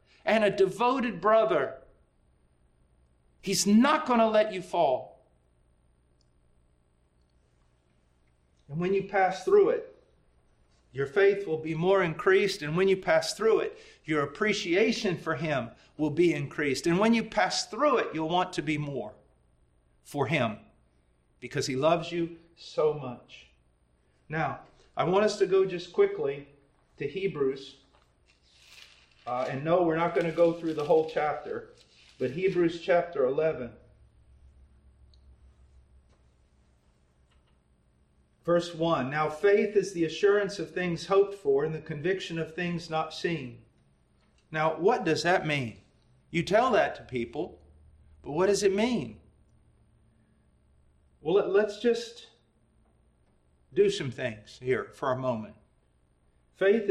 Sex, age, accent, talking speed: male, 40-59, American, 130 wpm